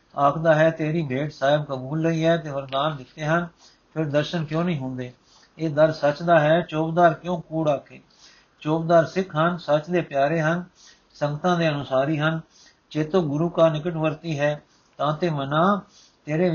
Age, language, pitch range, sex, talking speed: 60-79, Punjabi, 145-165 Hz, male, 165 wpm